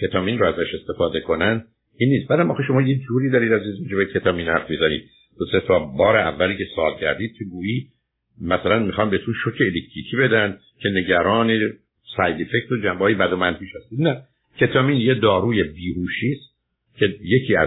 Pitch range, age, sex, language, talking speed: 100-130 Hz, 60-79, male, Persian, 175 wpm